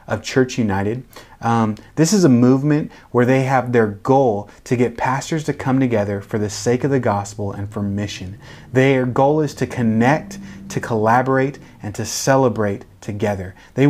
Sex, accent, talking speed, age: male, American, 175 wpm, 30-49